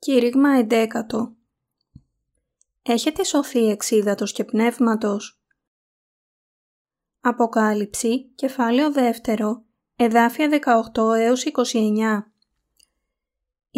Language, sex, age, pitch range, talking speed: Greek, female, 20-39, 225-255 Hz, 60 wpm